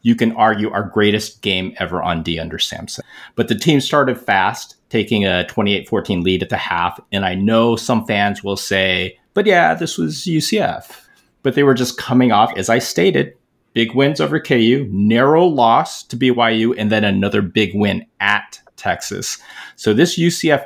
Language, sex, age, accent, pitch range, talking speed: English, male, 30-49, American, 95-115 Hz, 180 wpm